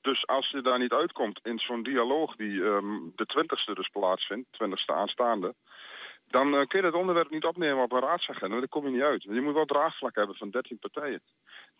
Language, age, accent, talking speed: Dutch, 40-59, Dutch, 215 wpm